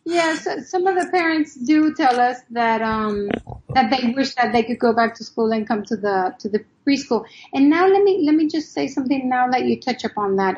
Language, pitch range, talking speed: English, 225-275 Hz, 240 wpm